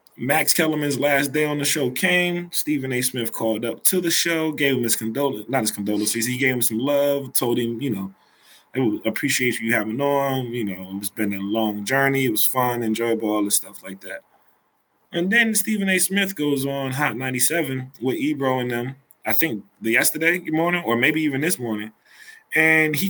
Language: English